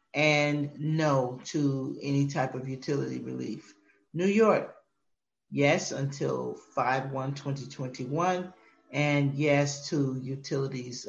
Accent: American